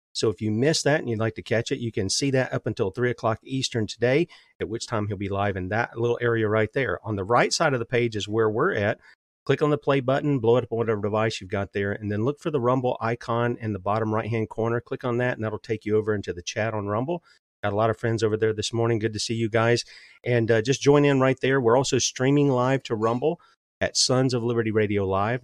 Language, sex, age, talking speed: English, male, 40-59, 275 wpm